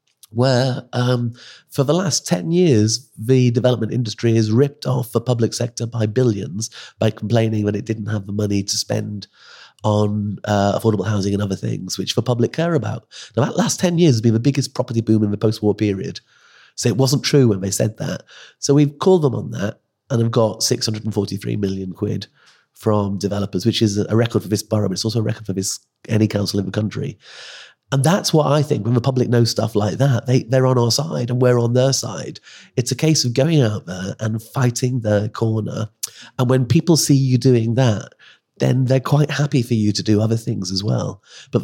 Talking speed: 215 wpm